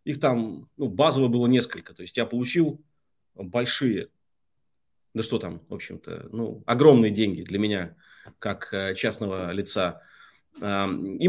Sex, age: male, 30-49